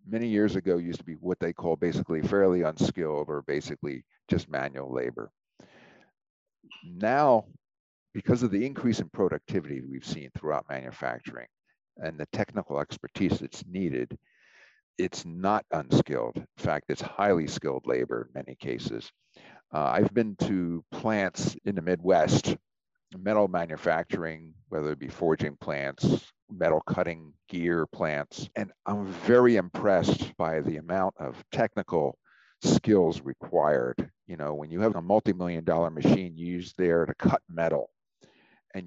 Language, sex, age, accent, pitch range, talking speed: English, male, 50-69, American, 80-95 Hz, 140 wpm